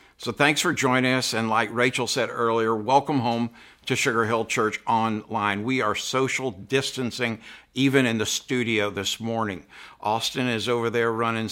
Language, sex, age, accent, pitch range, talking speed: English, male, 60-79, American, 115-135 Hz, 165 wpm